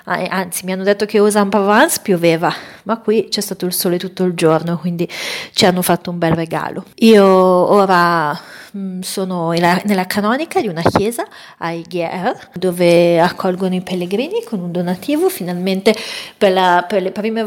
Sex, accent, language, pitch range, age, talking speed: female, native, Italian, 180-205 Hz, 30-49, 170 wpm